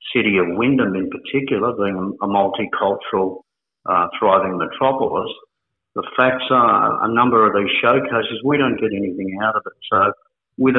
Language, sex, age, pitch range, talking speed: English, male, 50-69, 110-125 Hz, 155 wpm